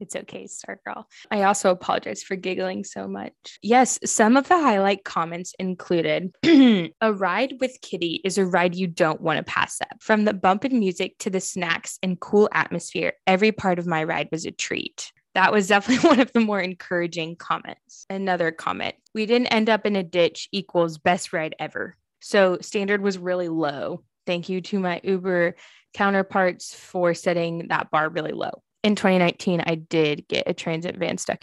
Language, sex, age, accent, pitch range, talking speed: English, female, 10-29, American, 170-210 Hz, 185 wpm